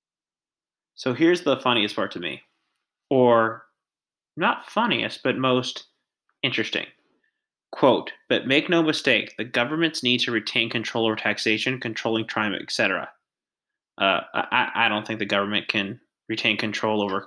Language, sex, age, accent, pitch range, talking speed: English, male, 30-49, American, 110-130 Hz, 145 wpm